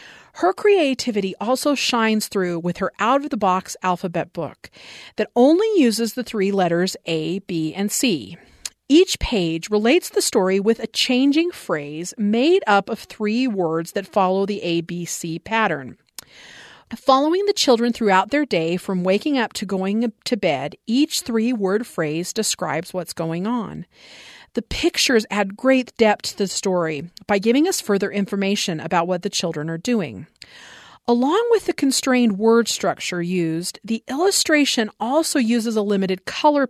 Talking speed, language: 155 wpm, English